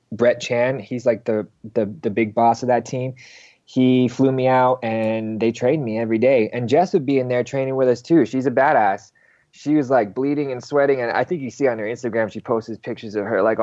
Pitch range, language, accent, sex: 105-120 Hz, English, American, male